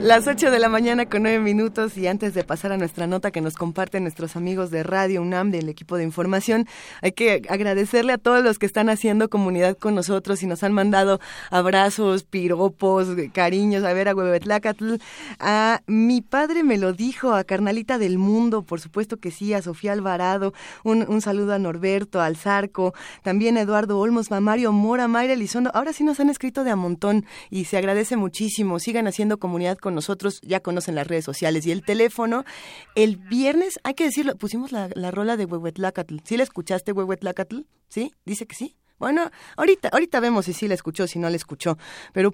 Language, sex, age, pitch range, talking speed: Spanish, female, 20-39, 185-235 Hz, 195 wpm